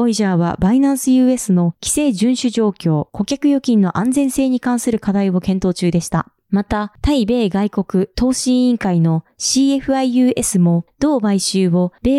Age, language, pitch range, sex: 20-39, Japanese, 190-260 Hz, female